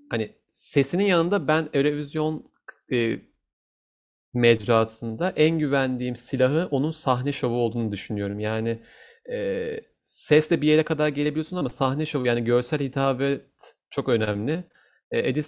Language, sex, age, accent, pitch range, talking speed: Turkish, male, 40-59, native, 115-150 Hz, 120 wpm